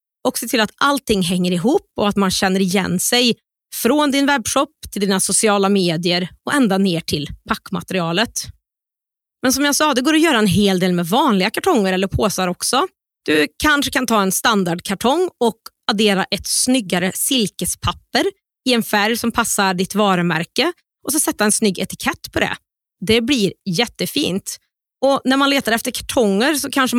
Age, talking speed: 30-49, 175 wpm